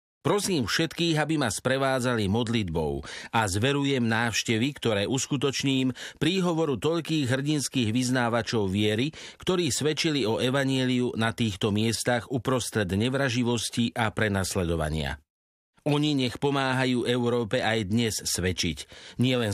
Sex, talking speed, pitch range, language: male, 110 wpm, 110-135 Hz, Slovak